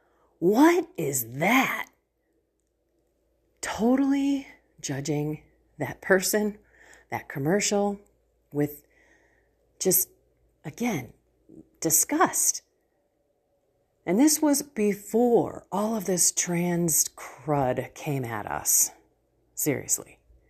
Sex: female